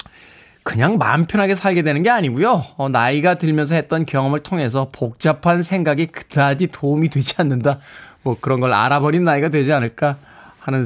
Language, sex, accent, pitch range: Korean, male, native, 140-200 Hz